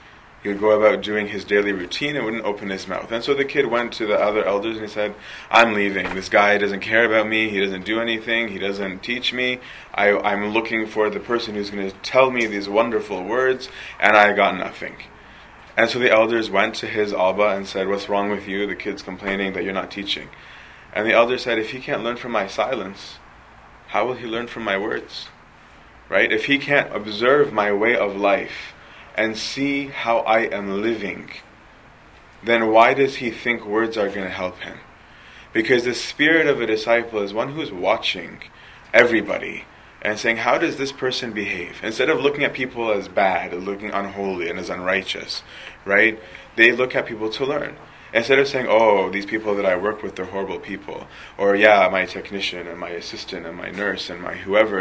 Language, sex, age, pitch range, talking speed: English, male, 20-39, 100-115 Hz, 205 wpm